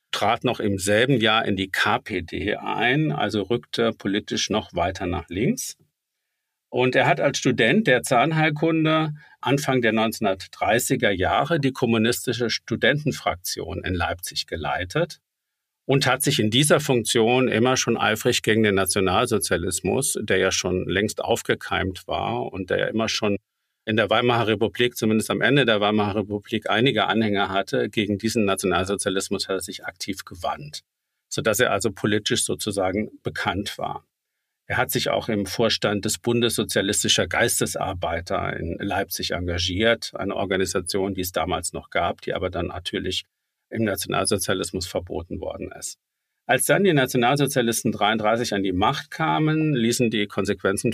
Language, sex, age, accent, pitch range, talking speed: German, male, 50-69, German, 100-125 Hz, 145 wpm